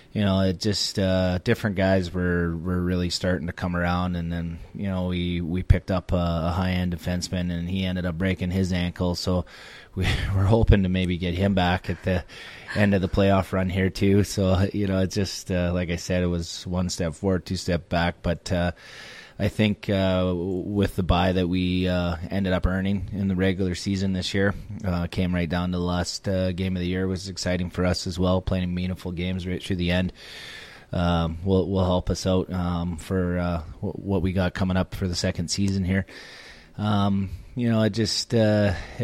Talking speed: 210 wpm